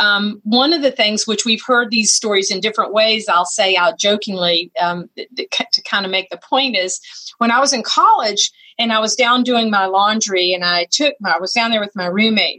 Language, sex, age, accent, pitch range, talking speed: English, female, 40-59, American, 210-290 Hz, 235 wpm